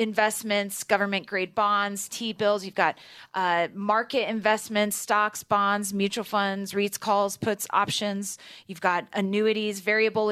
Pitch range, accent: 205-250 Hz, American